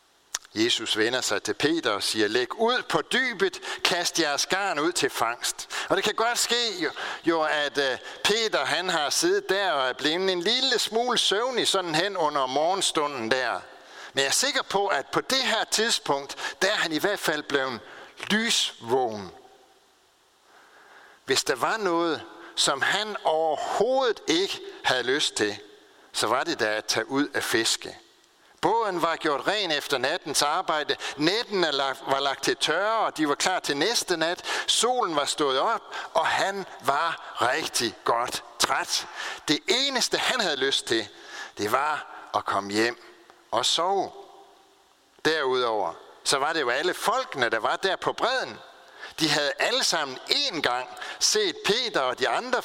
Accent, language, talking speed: native, Danish, 165 wpm